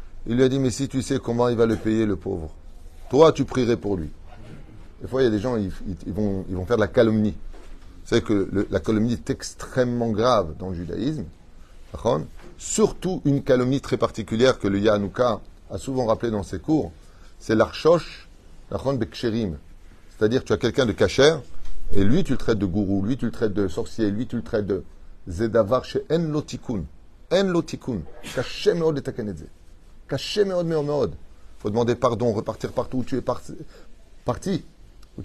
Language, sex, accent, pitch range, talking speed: French, male, French, 95-130 Hz, 190 wpm